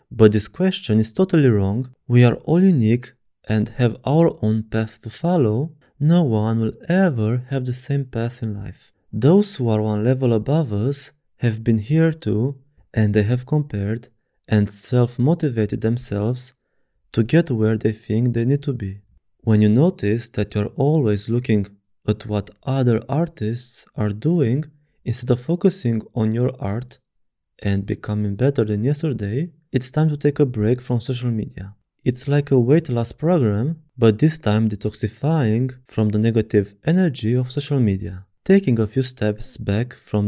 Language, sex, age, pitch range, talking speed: English, male, 20-39, 110-140 Hz, 165 wpm